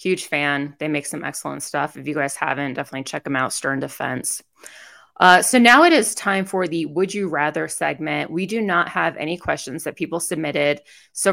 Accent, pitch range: American, 155-185 Hz